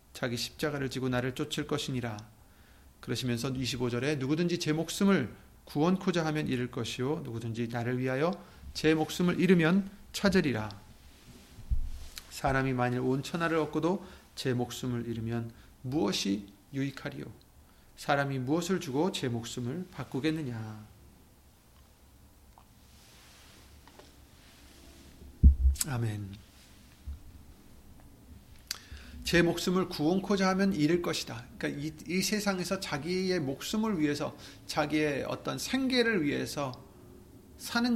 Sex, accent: male, native